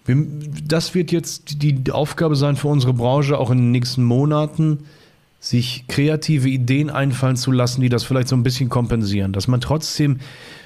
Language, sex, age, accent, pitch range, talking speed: German, male, 30-49, German, 125-155 Hz, 170 wpm